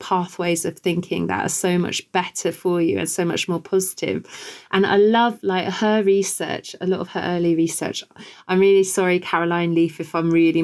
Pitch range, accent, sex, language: 175-200 Hz, British, female, English